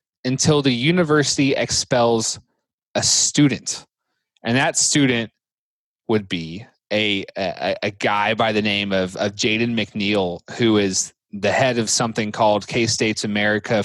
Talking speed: 135 wpm